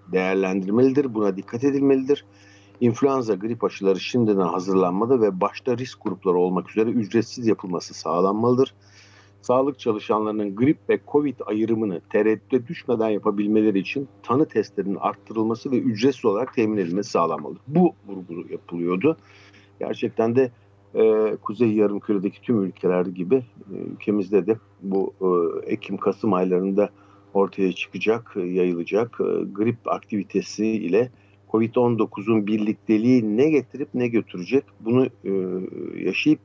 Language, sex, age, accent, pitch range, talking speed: Turkish, male, 50-69, native, 100-120 Hz, 110 wpm